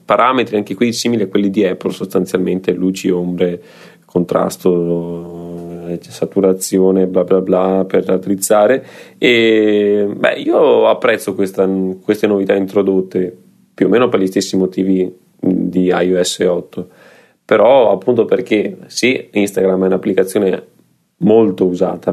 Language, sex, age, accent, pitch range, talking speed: Italian, male, 20-39, native, 95-105 Hz, 125 wpm